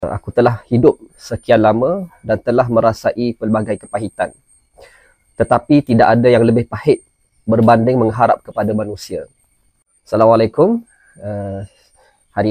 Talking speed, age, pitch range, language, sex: 110 wpm, 20-39, 105-125 Hz, Malay, male